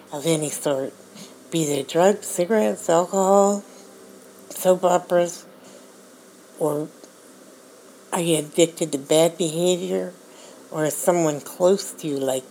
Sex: female